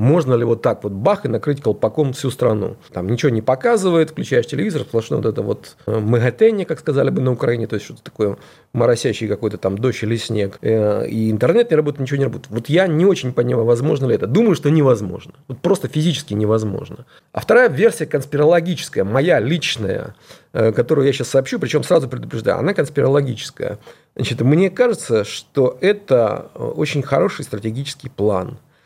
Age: 40-59